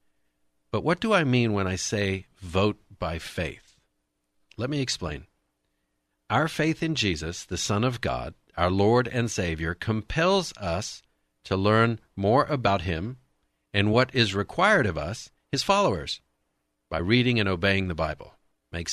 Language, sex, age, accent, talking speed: English, male, 50-69, American, 150 wpm